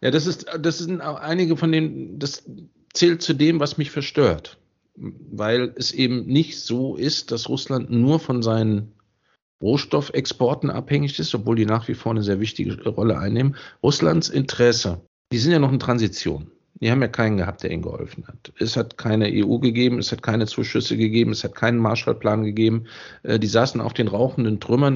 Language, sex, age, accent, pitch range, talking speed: German, male, 50-69, German, 105-140 Hz, 190 wpm